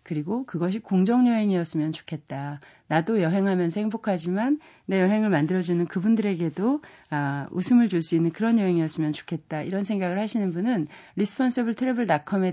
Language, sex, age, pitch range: Korean, female, 40-59, 160-225 Hz